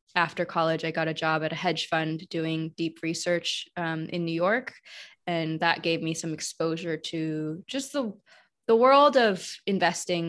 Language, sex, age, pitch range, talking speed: English, female, 20-39, 160-180 Hz, 175 wpm